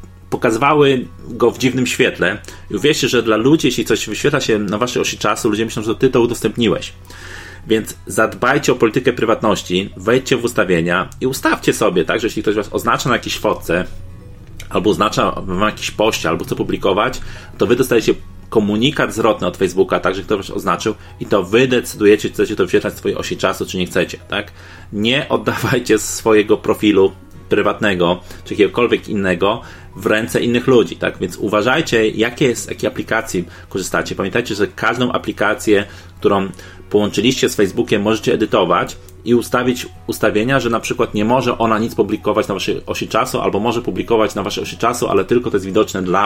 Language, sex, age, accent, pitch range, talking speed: Polish, male, 30-49, native, 90-115 Hz, 180 wpm